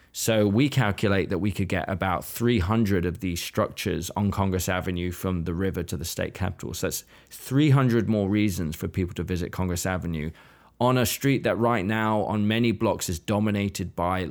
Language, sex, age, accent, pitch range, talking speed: English, male, 20-39, British, 90-110 Hz, 190 wpm